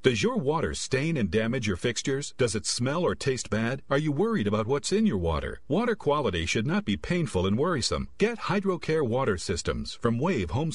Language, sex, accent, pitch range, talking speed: English, male, American, 110-175 Hz, 205 wpm